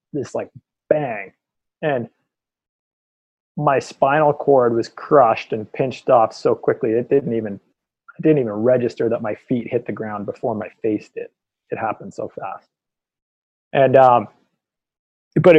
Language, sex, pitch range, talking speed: English, male, 110-130 Hz, 145 wpm